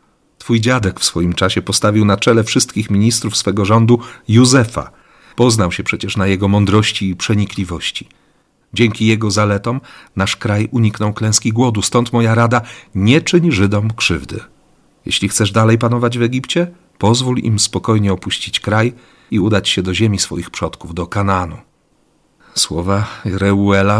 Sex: male